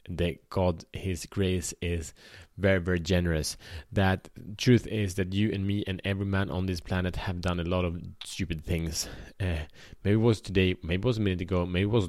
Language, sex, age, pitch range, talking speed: Swedish, male, 30-49, 85-100 Hz, 210 wpm